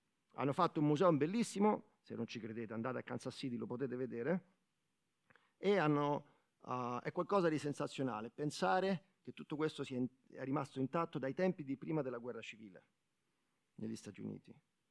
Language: Italian